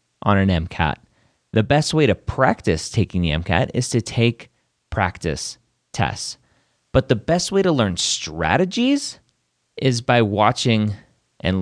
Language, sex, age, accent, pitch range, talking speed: English, male, 30-49, American, 85-140 Hz, 140 wpm